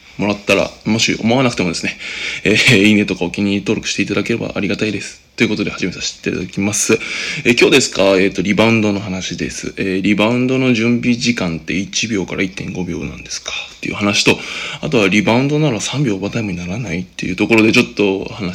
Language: Japanese